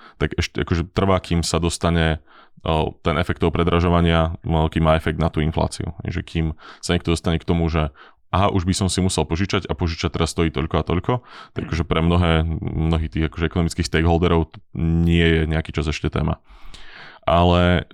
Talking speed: 185 wpm